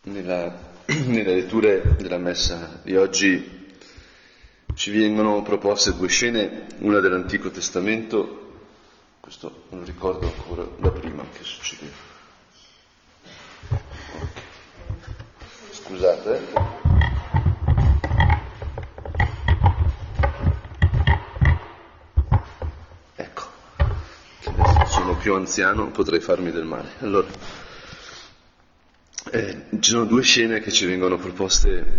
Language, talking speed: Italian, 85 wpm